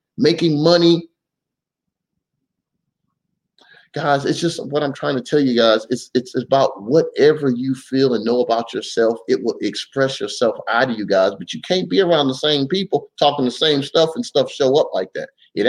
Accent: American